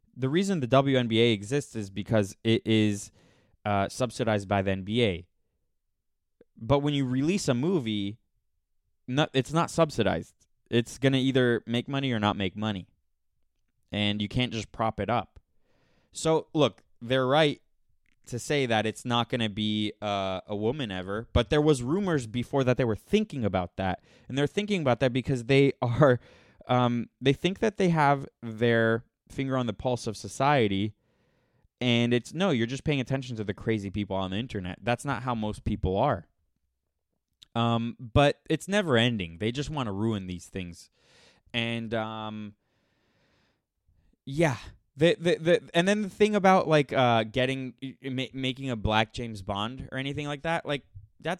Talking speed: 165 wpm